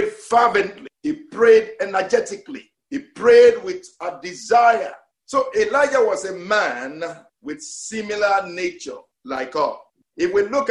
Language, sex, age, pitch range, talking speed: English, male, 50-69, 165-270 Hz, 125 wpm